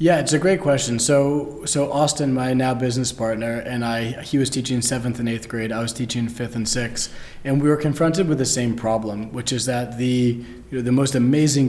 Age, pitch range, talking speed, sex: 20-39, 120-135 Hz, 220 wpm, male